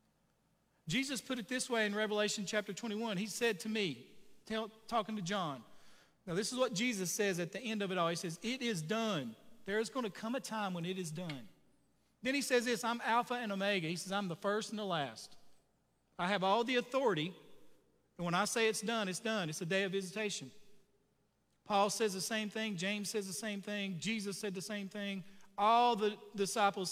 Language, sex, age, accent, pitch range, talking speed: English, male, 40-59, American, 190-225 Hz, 215 wpm